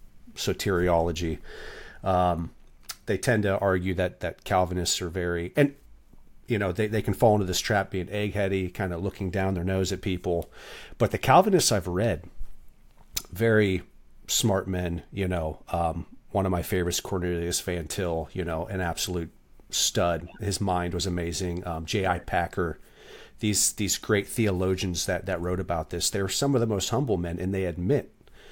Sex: male